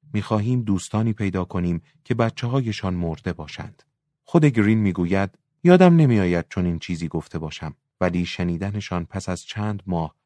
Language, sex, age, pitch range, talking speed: Persian, male, 30-49, 85-110 Hz, 150 wpm